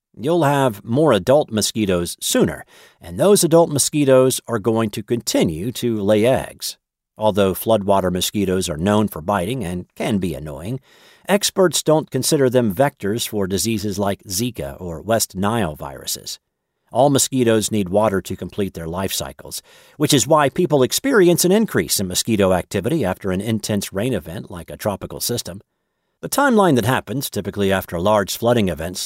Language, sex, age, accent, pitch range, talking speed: English, male, 50-69, American, 100-130 Hz, 160 wpm